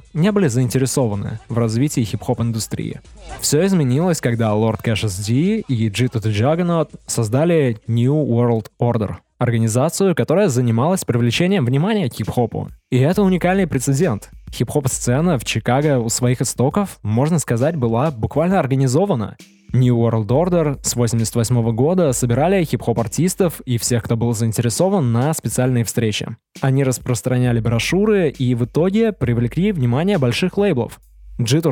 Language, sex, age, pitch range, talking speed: Russian, male, 20-39, 115-145 Hz, 130 wpm